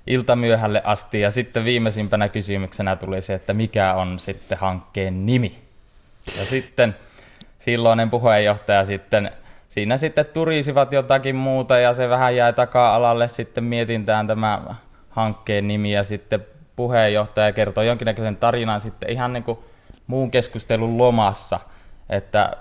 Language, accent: Finnish, native